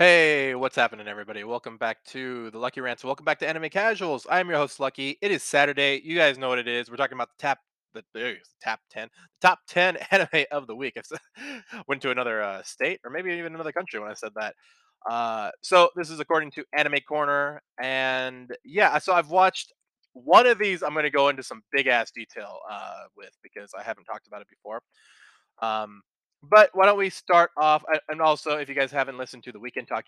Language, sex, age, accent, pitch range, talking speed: English, male, 20-39, American, 130-170 Hz, 225 wpm